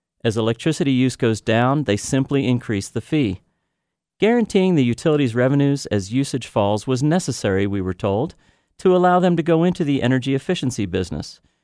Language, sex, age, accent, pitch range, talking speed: English, male, 40-59, American, 105-140 Hz, 165 wpm